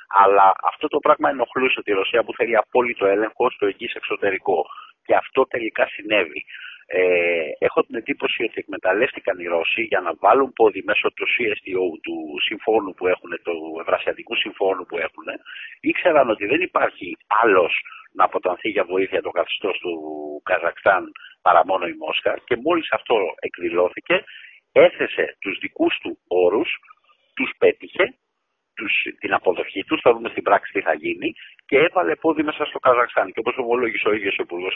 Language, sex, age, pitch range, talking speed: Greek, male, 50-69, 335-465 Hz, 155 wpm